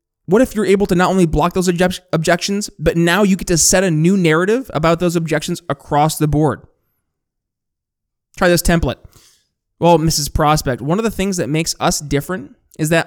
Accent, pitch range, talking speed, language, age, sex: American, 150-185 Hz, 190 wpm, English, 20-39, male